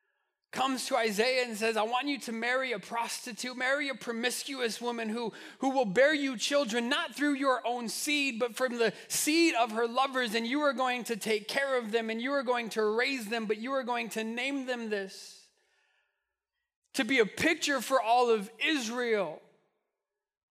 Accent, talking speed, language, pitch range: American, 195 wpm, English, 195-265 Hz